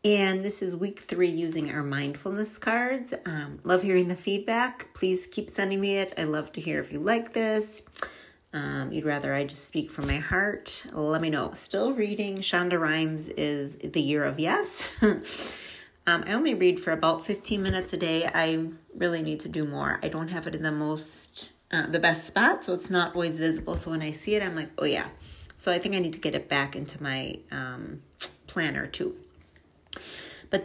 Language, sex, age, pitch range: English, female, 30-49, 160-210 Hz